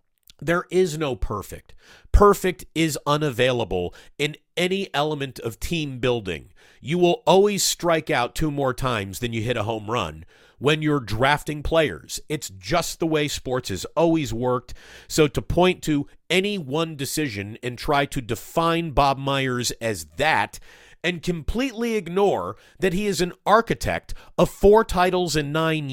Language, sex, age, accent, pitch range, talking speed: English, male, 50-69, American, 125-180 Hz, 155 wpm